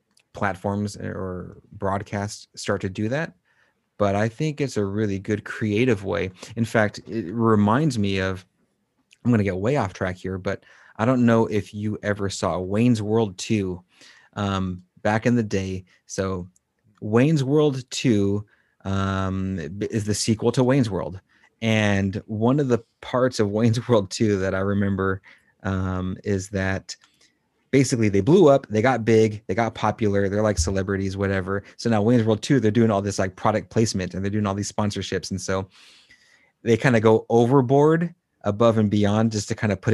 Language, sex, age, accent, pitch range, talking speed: English, male, 30-49, American, 95-115 Hz, 180 wpm